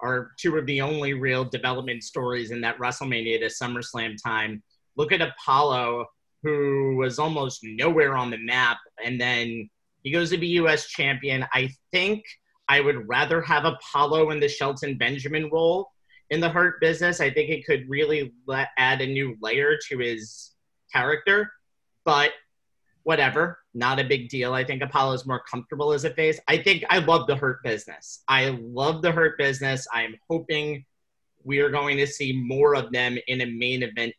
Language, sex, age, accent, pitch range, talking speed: English, male, 30-49, American, 115-145 Hz, 175 wpm